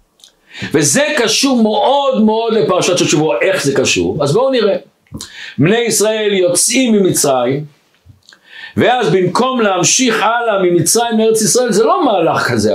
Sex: male